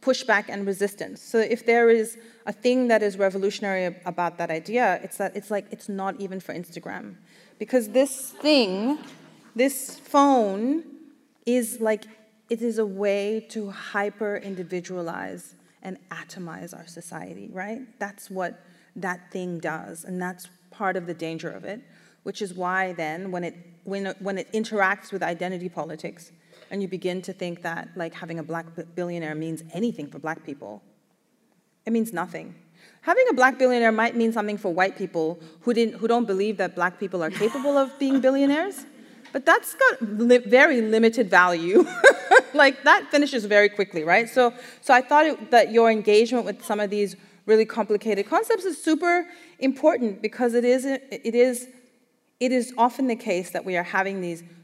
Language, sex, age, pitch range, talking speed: English, female, 30-49, 180-245 Hz, 175 wpm